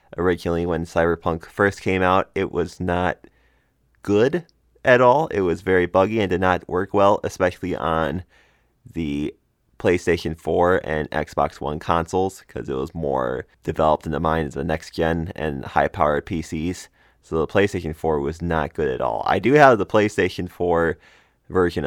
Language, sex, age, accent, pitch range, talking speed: English, male, 20-39, American, 80-95 Hz, 165 wpm